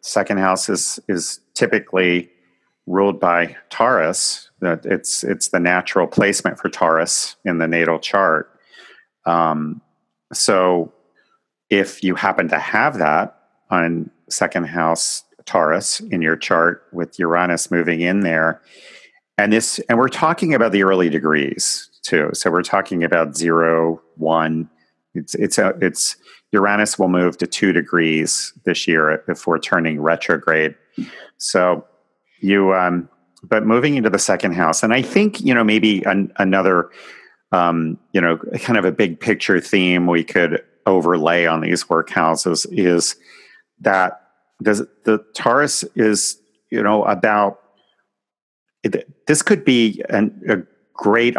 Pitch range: 85-100 Hz